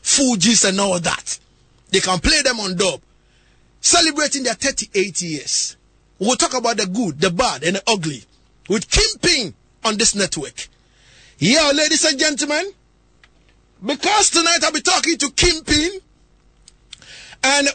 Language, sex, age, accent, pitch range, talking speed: English, male, 30-49, Nigerian, 190-270 Hz, 140 wpm